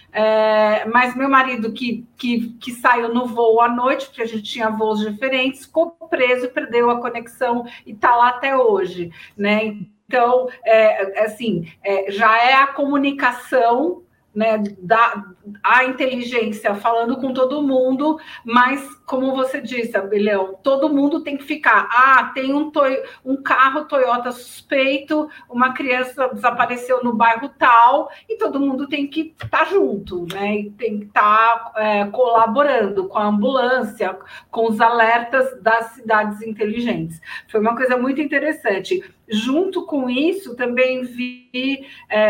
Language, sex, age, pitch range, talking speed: Portuguese, female, 50-69, 220-270 Hz, 150 wpm